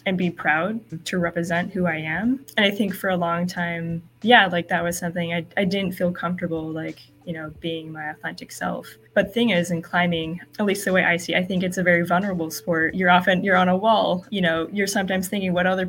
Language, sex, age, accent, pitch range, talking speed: English, female, 20-39, American, 160-180 Hz, 240 wpm